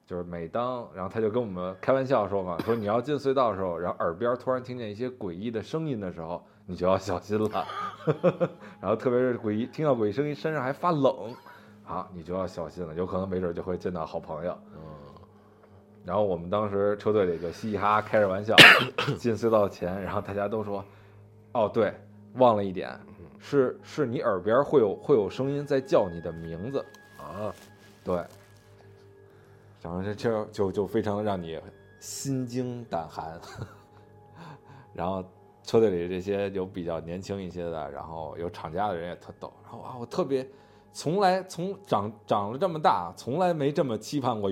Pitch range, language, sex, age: 95-125 Hz, Chinese, male, 20-39